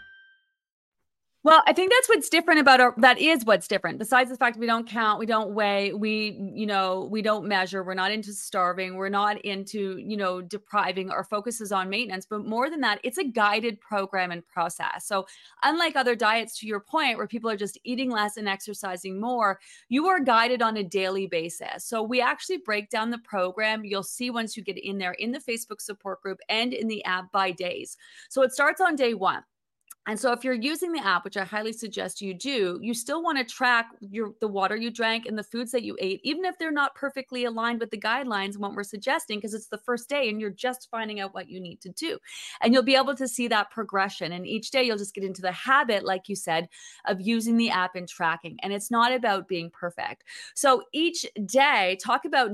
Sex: female